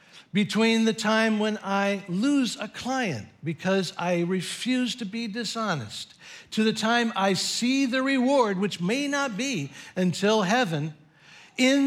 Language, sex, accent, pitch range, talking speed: English, male, American, 165-230 Hz, 140 wpm